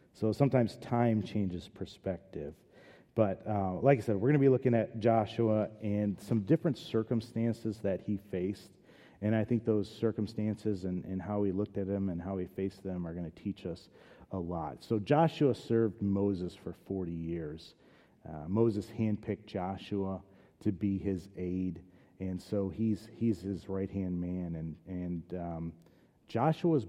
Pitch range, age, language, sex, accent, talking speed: 95-115 Hz, 40-59, English, male, American, 165 wpm